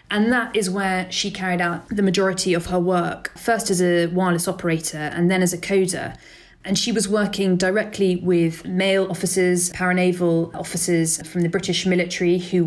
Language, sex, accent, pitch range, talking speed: English, female, British, 175-195 Hz, 175 wpm